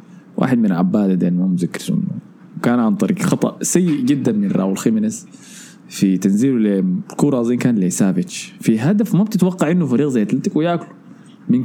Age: 20-39